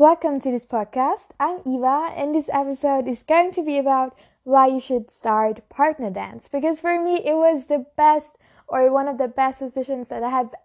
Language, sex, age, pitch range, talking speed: English, female, 20-39, 245-290 Hz, 205 wpm